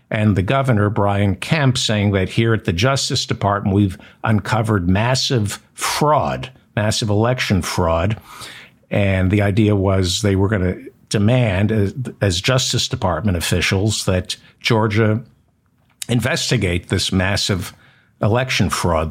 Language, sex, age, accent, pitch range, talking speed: English, male, 60-79, American, 95-115 Hz, 125 wpm